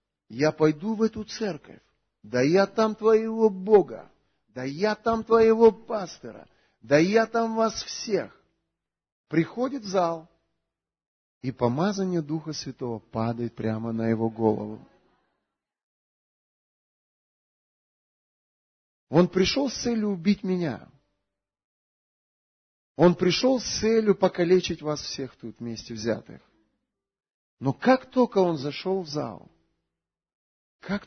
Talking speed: 110 wpm